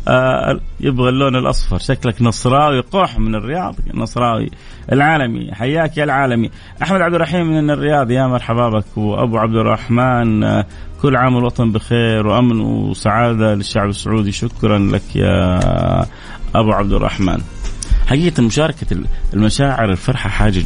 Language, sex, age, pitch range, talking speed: Arabic, male, 30-49, 100-125 Hz, 125 wpm